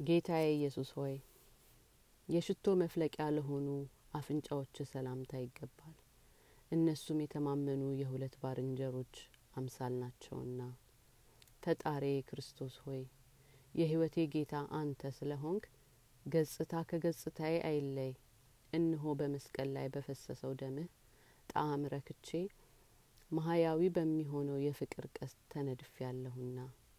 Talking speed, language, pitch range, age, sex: 80 wpm, Amharic, 130-155 Hz, 30-49, female